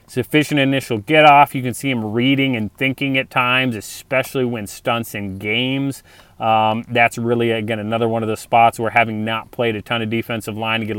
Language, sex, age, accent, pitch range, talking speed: English, male, 30-49, American, 105-120 Hz, 205 wpm